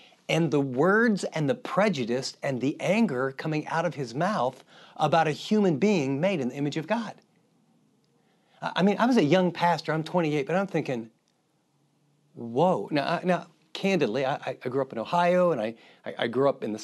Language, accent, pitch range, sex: English, American, 140-175 Hz, male